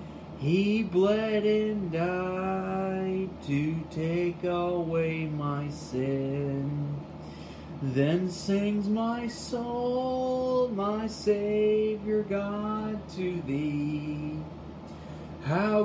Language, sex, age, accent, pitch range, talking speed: English, male, 30-49, American, 150-205 Hz, 70 wpm